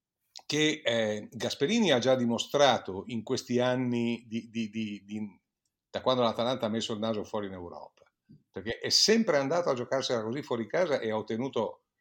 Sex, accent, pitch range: male, native, 110-135 Hz